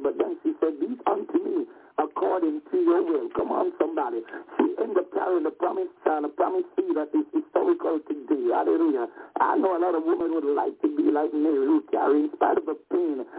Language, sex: English, male